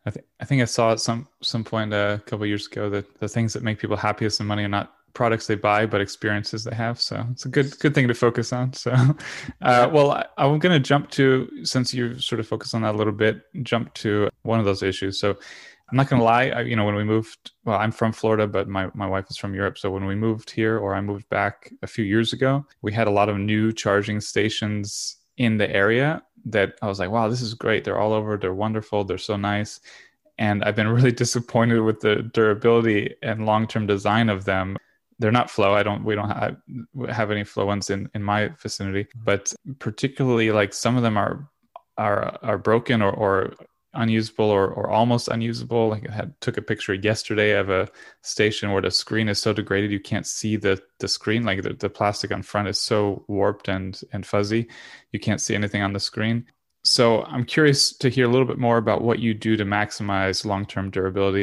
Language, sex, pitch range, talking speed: English, male, 100-115 Hz, 230 wpm